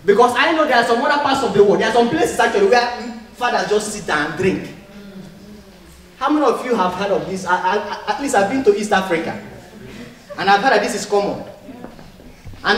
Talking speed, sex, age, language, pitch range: 230 wpm, male, 30-49, English, 190-285 Hz